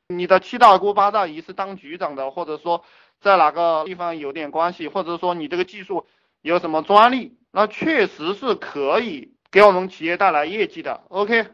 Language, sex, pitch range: Chinese, male, 155-210 Hz